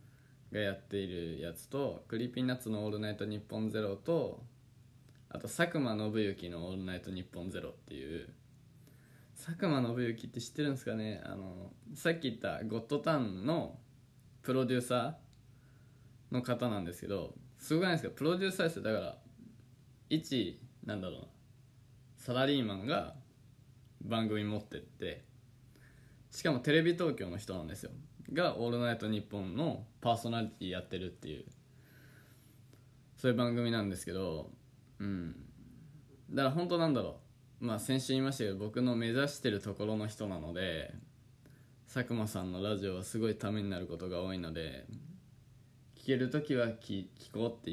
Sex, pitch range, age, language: male, 105-130 Hz, 20-39, Japanese